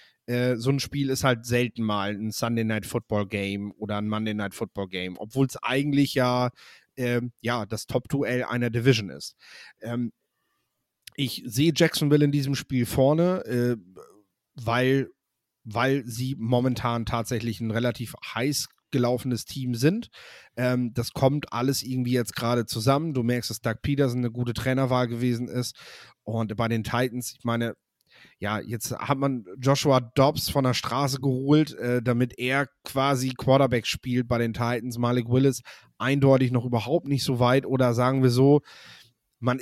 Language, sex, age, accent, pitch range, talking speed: German, male, 30-49, German, 120-135 Hz, 150 wpm